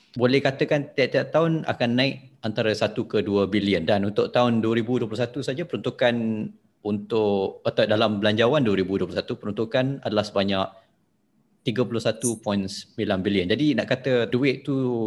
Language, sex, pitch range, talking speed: Malay, male, 100-130 Hz, 125 wpm